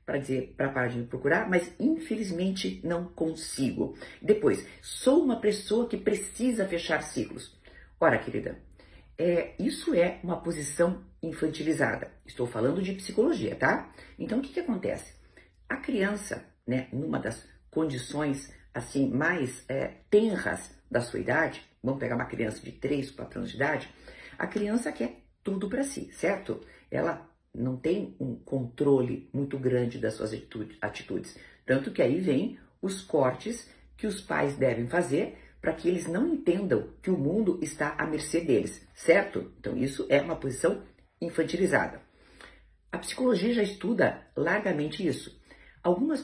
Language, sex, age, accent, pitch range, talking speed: Portuguese, female, 50-69, Brazilian, 130-210 Hz, 145 wpm